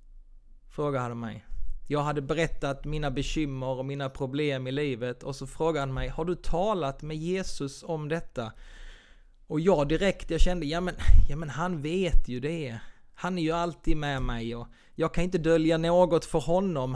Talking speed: 180 wpm